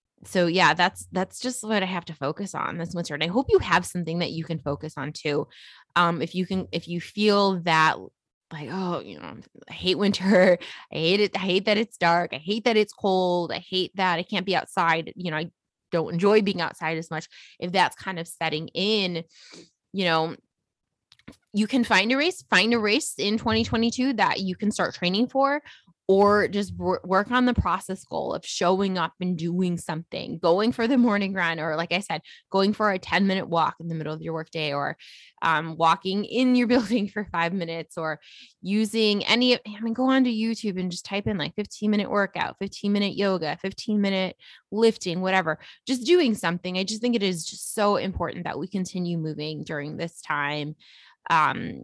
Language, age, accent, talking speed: English, 20-39, American, 205 wpm